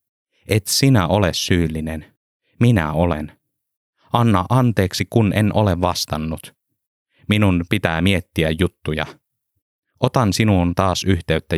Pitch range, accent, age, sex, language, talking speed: 80-105 Hz, native, 30-49, male, Finnish, 105 wpm